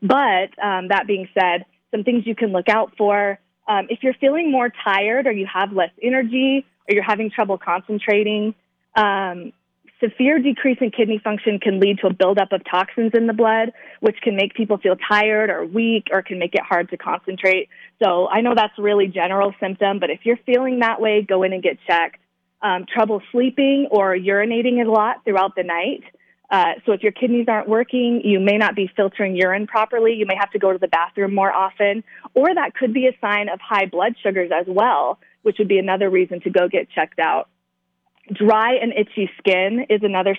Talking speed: 210 wpm